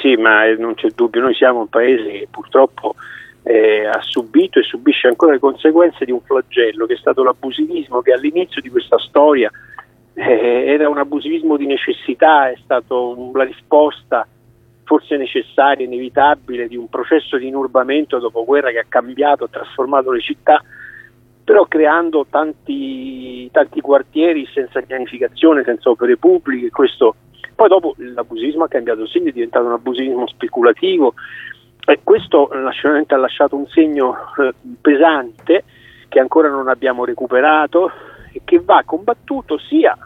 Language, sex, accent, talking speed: Italian, male, native, 150 wpm